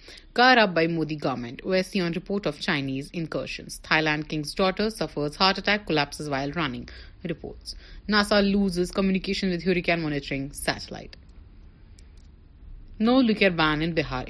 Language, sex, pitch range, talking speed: Urdu, female, 150-195 Hz, 130 wpm